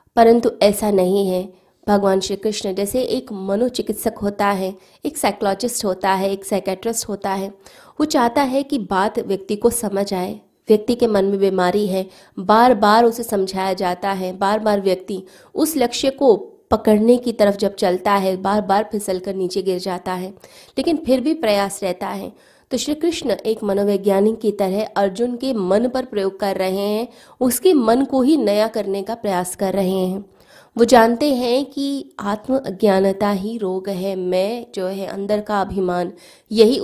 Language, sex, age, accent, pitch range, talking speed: Hindi, female, 20-39, native, 190-235 Hz, 175 wpm